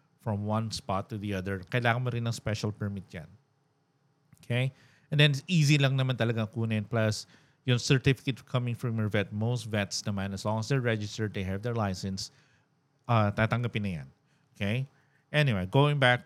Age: 50-69